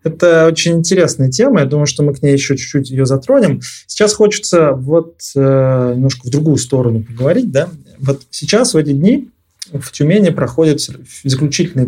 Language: Russian